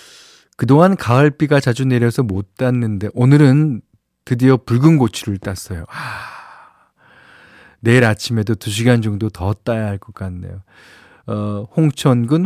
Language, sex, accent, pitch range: Korean, male, native, 100-145 Hz